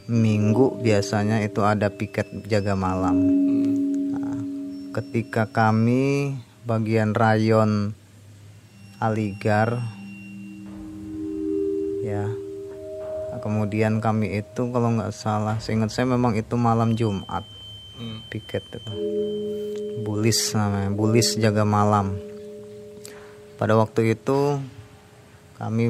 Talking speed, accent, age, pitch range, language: 85 wpm, native, 20-39, 105-120 Hz, Indonesian